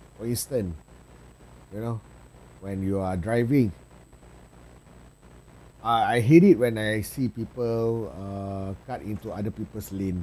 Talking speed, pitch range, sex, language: 125 wpm, 85-135 Hz, male, Malay